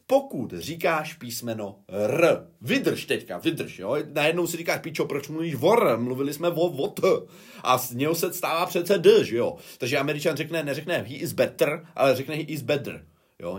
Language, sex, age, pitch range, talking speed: Czech, male, 30-49, 120-175 Hz, 170 wpm